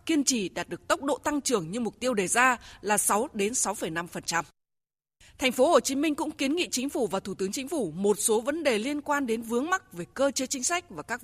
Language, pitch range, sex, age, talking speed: Vietnamese, 200-275 Hz, female, 20-39, 255 wpm